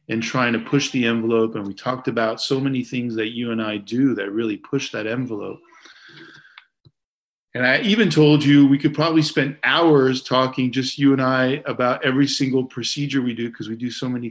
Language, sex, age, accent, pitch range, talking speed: English, male, 40-59, American, 115-140 Hz, 205 wpm